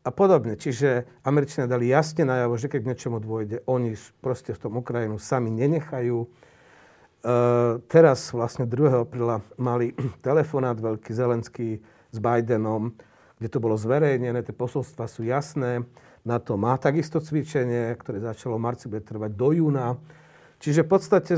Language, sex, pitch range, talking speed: Slovak, male, 120-155 Hz, 150 wpm